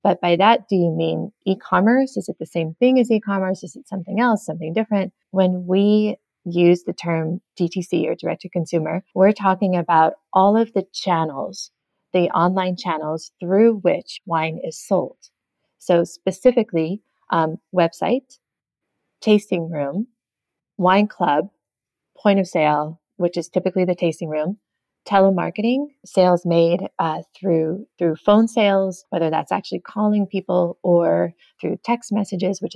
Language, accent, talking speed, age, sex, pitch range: English, American, 145 wpm, 30-49, female, 170-205 Hz